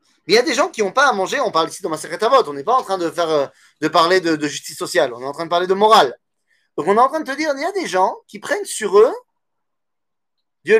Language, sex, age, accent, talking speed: French, male, 30-49, French, 310 wpm